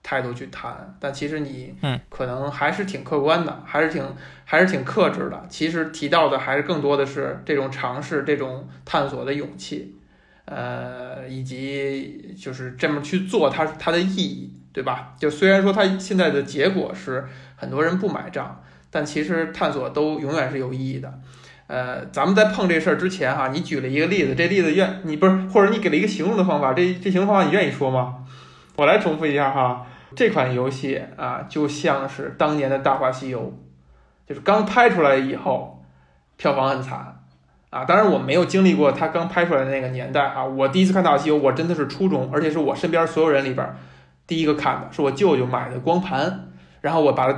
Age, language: 20-39, Chinese